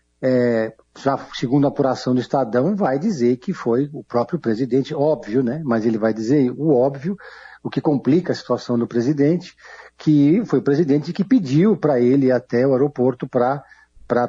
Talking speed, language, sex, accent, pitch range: 175 wpm, Portuguese, male, Brazilian, 125-160 Hz